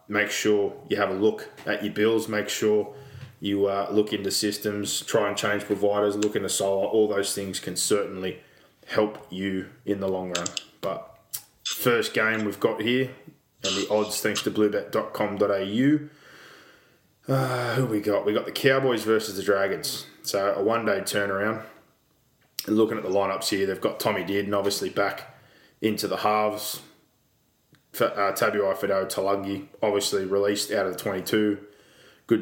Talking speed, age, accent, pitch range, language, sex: 160 wpm, 20-39, Australian, 95-105 Hz, English, male